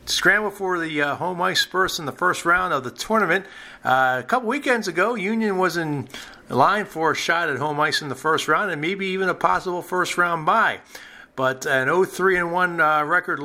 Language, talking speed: English, 200 wpm